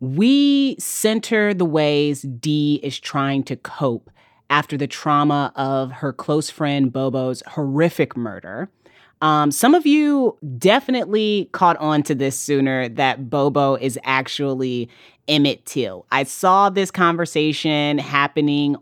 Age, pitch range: 30-49, 140-210 Hz